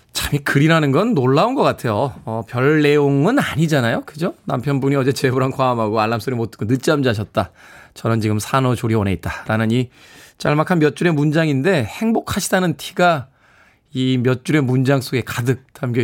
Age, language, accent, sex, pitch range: 20-39, Korean, native, male, 115-155 Hz